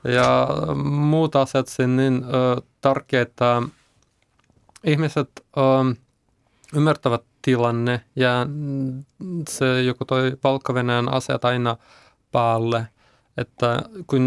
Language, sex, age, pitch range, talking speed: Finnish, male, 20-39, 120-135 Hz, 85 wpm